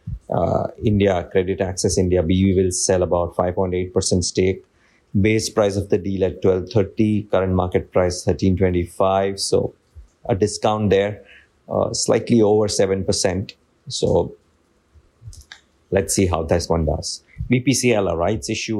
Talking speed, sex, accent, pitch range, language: 130 wpm, male, Indian, 90-105 Hz, English